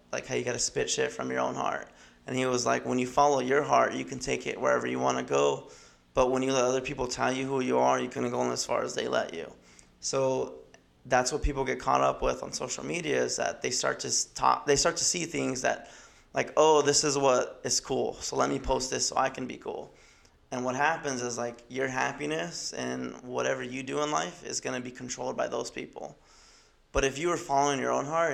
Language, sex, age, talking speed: English, male, 20-39, 255 wpm